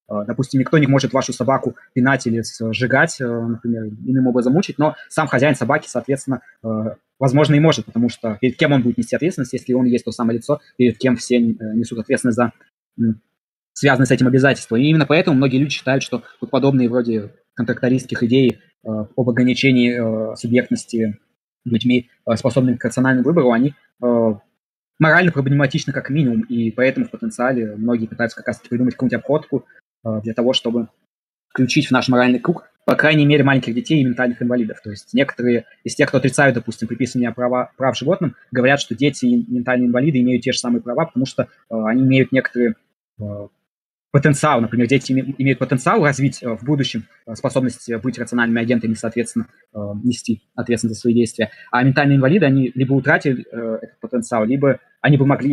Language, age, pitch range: Russian, 20-39, 115-135 Hz